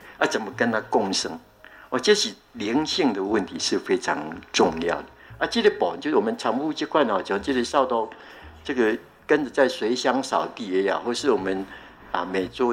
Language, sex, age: Chinese, male, 60-79